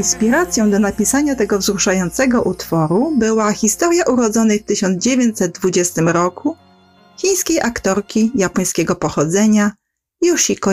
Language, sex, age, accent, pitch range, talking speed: Polish, female, 40-59, native, 180-230 Hz, 95 wpm